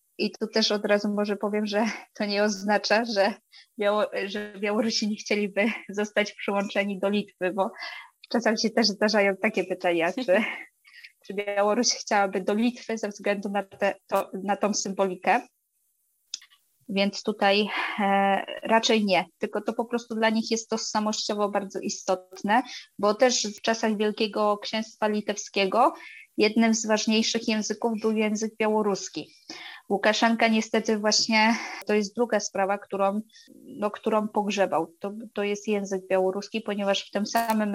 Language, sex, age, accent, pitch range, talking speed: Polish, female, 20-39, native, 200-220 Hz, 140 wpm